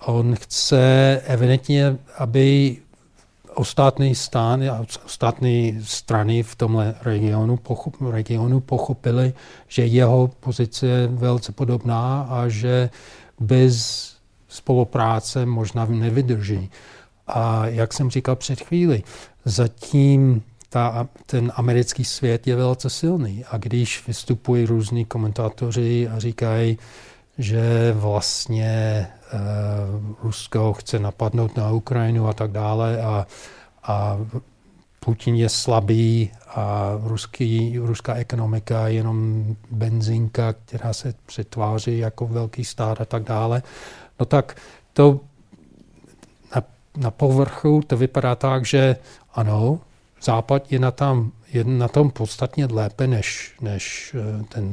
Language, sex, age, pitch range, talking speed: Czech, male, 40-59, 110-130 Hz, 110 wpm